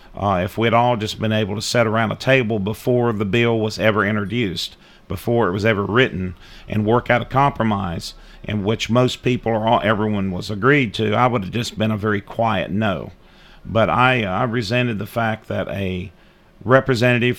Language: English